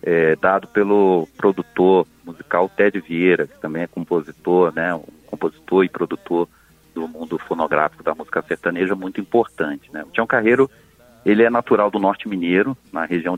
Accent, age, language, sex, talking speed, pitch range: Brazilian, 40-59, Portuguese, male, 145 wpm, 85-105 Hz